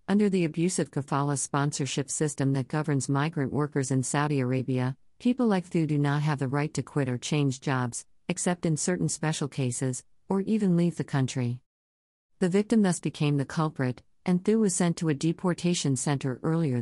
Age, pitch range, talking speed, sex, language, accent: 50-69, 130-155 Hz, 180 wpm, female, English, American